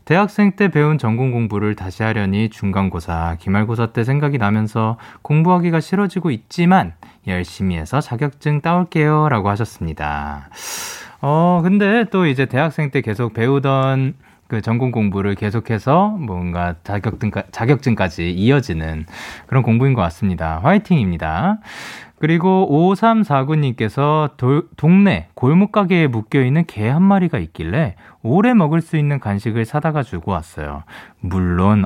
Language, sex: Korean, male